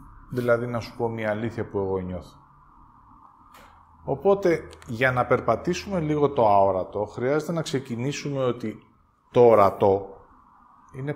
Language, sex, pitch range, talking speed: Greek, male, 105-130 Hz, 125 wpm